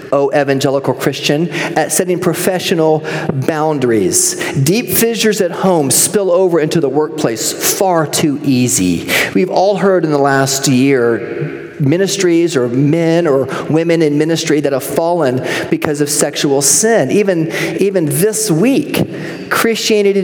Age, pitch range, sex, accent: 40-59, 160-245 Hz, male, American